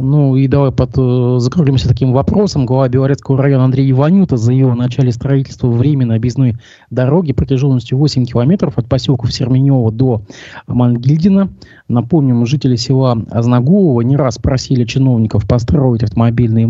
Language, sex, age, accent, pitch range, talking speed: Russian, male, 20-39, native, 110-130 Hz, 130 wpm